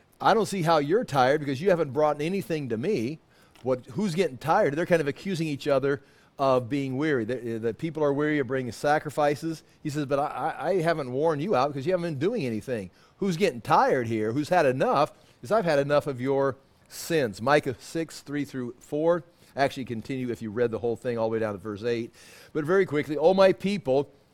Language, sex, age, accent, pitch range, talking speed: English, male, 40-59, American, 130-165 Hz, 220 wpm